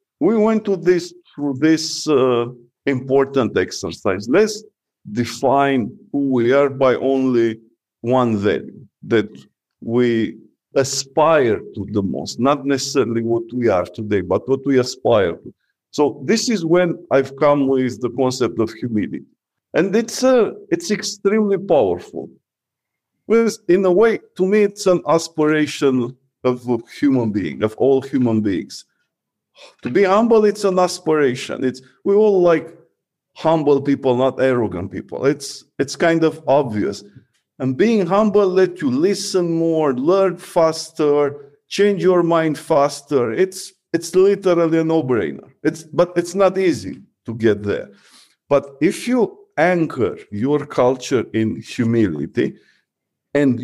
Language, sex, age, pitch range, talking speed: English, male, 50-69, 130-185 Hz, 140 wpm